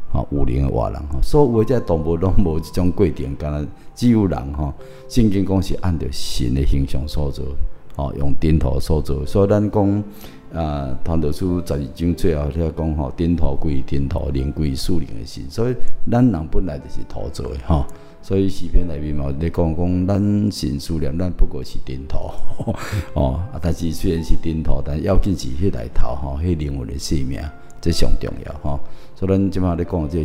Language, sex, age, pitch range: Chinese, male, 50-69, 70-90 Hz